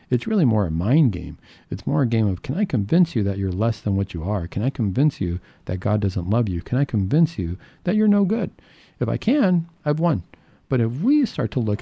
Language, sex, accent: English, male, American